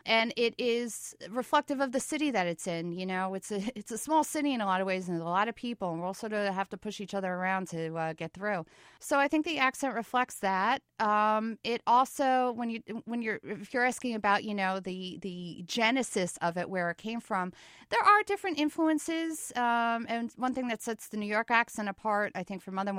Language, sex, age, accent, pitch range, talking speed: English, female, 40-59, American, 190-245 Hz, 240 wpm